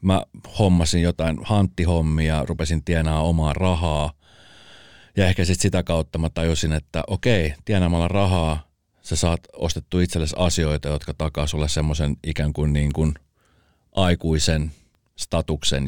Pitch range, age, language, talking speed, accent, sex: 75-95 Hz, 40-59, Finnish, 130 wpm, native, male